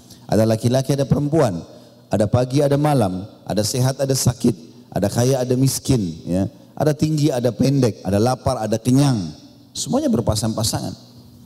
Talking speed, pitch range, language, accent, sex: 140 wpm, 110-145 Hz, English, Indonesian, male